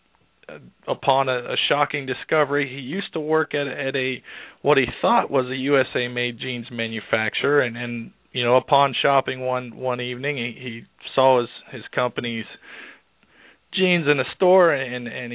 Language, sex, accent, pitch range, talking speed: English, male, American, 120-140 Hz, 165 wpm